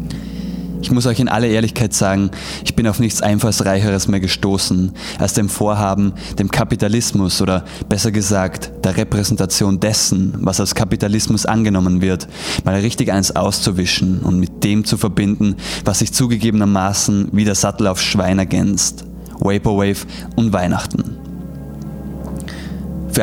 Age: 20-39